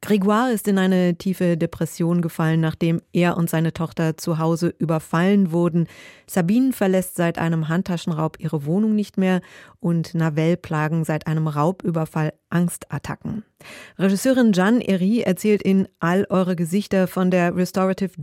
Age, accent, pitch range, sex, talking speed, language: 30-49, German, 165-190 Hz, female, 140 wpm, German